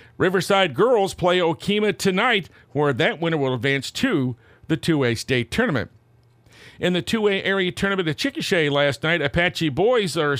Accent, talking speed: American, 155 wpm